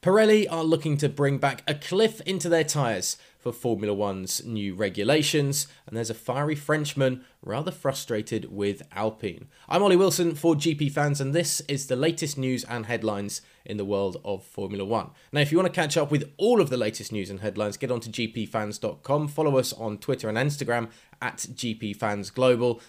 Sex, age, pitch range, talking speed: male, 20-39, 110-160 Hz, 185 wpm